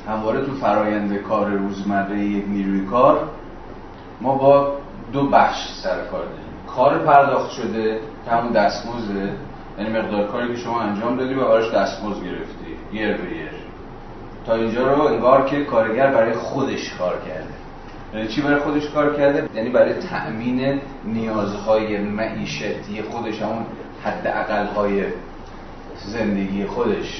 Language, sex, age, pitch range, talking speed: Persian, male, 30-49, 105-140 Hz, 130 wpm